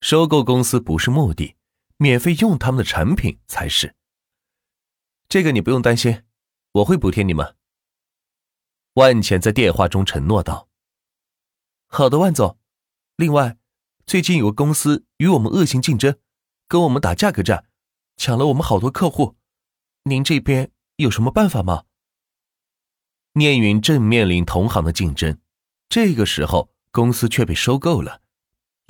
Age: 30-49